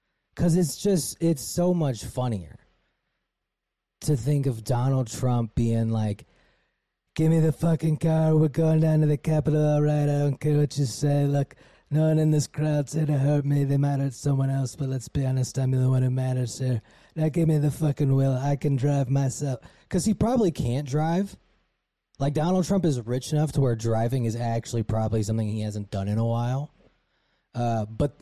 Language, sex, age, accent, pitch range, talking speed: English, male, 20-39, American, 115-145 Hz, 200 wpm